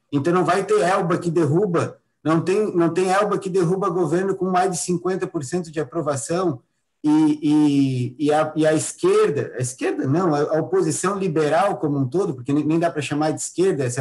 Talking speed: 170 wpm